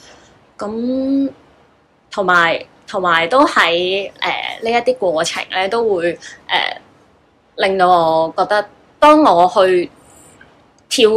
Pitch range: 170-225 Hz